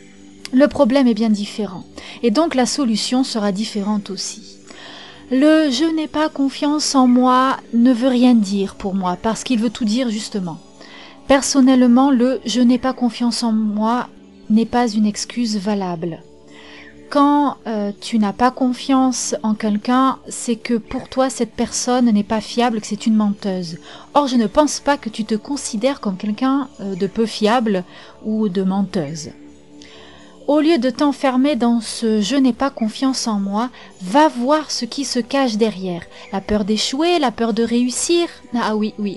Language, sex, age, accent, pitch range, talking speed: French, female, 30-49, French, 205-255 Hz, 170 wpm